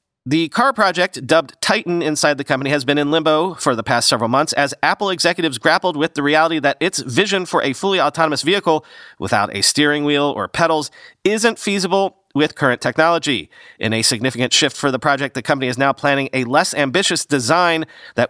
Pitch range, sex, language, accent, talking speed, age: 130-170 Hz, male, English, American, 195 wpm, 40-59